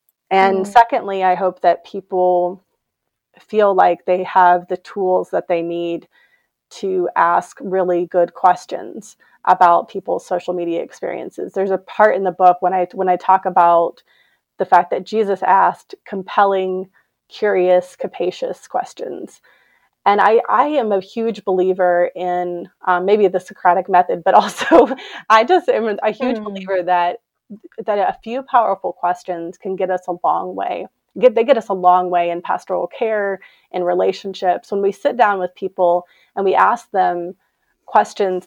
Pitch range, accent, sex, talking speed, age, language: 180-215 Hz, American, female, 160 wpm, 30-49, English